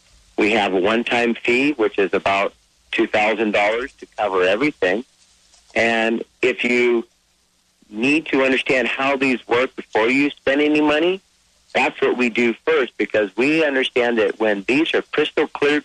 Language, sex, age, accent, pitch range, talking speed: English, male, 50-69, American, 95-135 Hz, 150 wpm